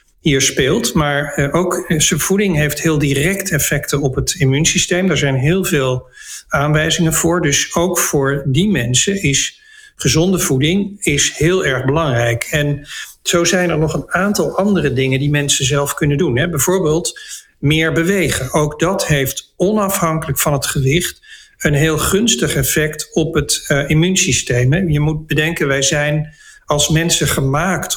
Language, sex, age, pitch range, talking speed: Dutch, male, 50-69, 145-175 Hz, 150 wpm